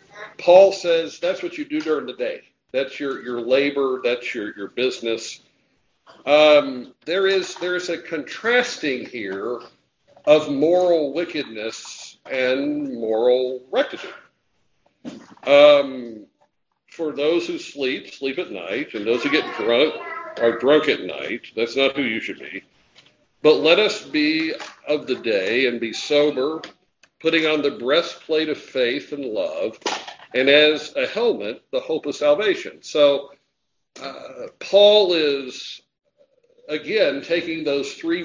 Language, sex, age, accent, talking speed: English, male, 60-79, American, 140 wpm